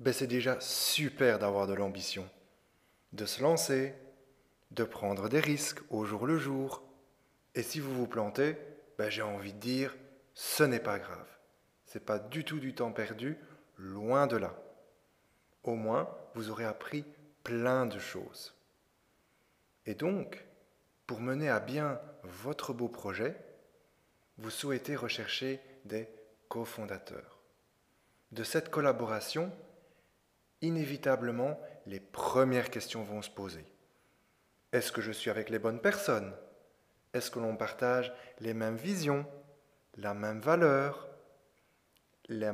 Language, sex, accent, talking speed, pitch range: French, male, French, 135 wpm, 110-140 Hz